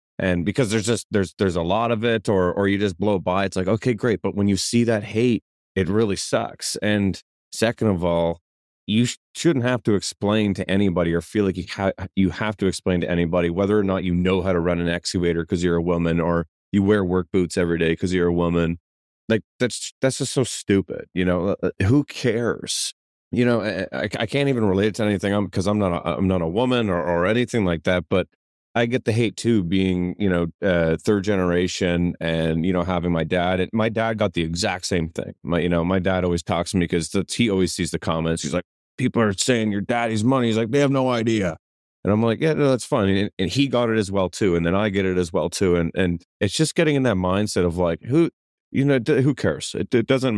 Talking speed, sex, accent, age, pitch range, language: 250 wpm, male, American, 30-49, 85-110 Hz, English